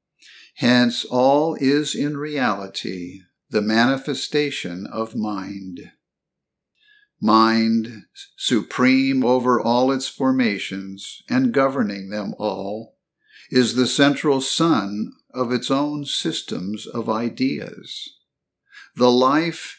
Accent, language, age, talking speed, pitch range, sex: American, English, 50-69, 95 wpm, 115-160 Hz, male